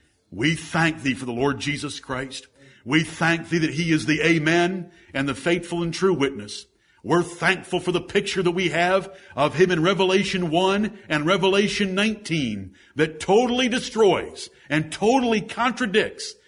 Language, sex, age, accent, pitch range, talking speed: English, male, 60-79, American, 150-205 Hz, 160 wpm